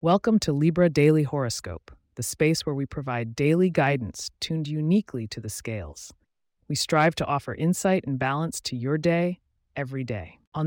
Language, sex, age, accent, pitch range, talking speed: English, female, 30-49, American, 110-160 Hz, 170 wpm